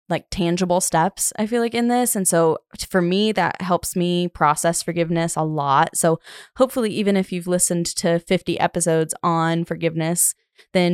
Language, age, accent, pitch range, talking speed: English, 20-39, American, 165-190 Hz, 175 wpm